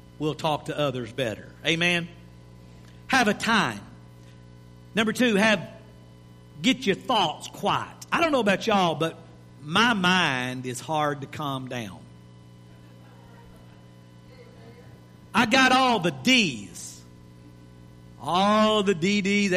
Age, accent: 50-69, American